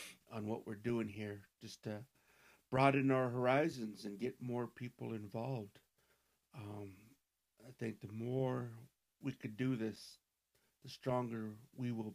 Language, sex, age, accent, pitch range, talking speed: English, male, 60-79, American, 110-130 Hz, 140 wpm